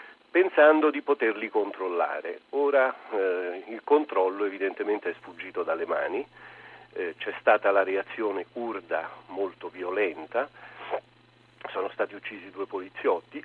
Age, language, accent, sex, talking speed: 40-59, Italian, native, male, 115 wpm